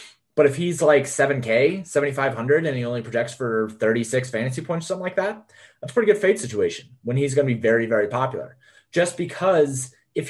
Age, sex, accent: 30-49, male, American